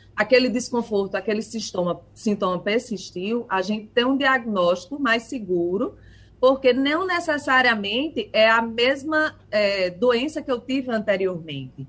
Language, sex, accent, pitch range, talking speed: Portuguese, female, Brazilian, 175-235 Hz, 125 wpm